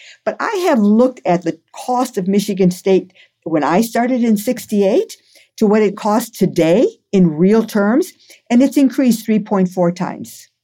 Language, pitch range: English, 185-235 Hz